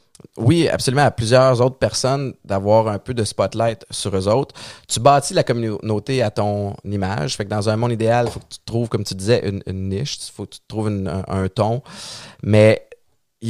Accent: Canadian